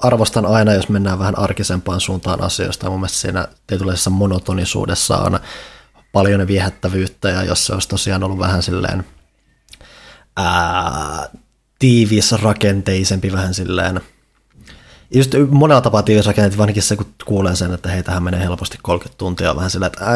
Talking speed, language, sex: 130 wpm, Finnish, male